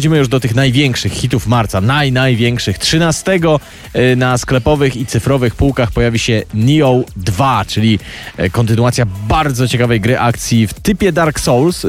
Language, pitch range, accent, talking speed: Polish, 110-140 Hz, native, 135 wpm